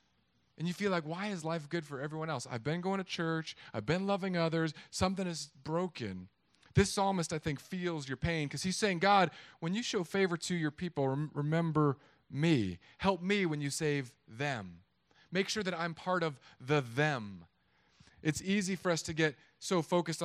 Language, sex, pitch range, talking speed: English, male, 135-170 Hz, 195 wpm